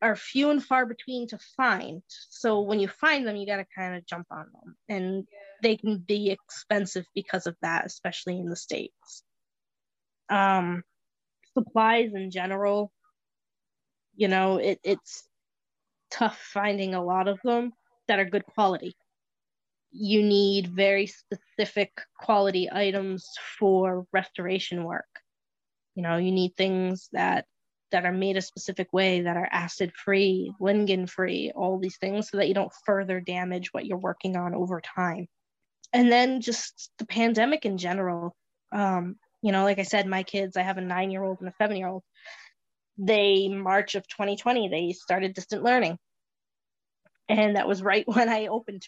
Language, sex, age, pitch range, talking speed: English, female, 20-39, 185-215 Hz, 155 wpm